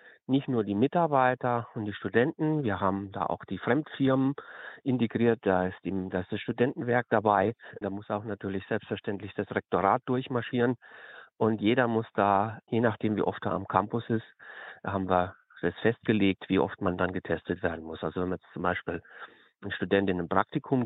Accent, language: German, German